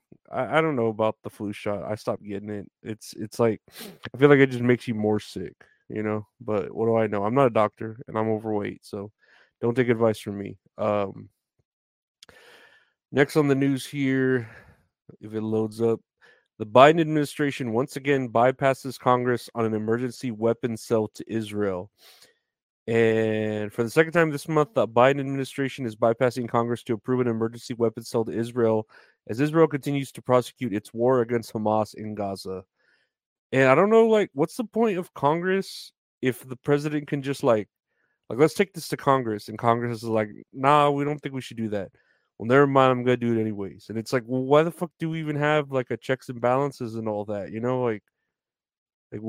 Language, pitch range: English, 110-140 Hz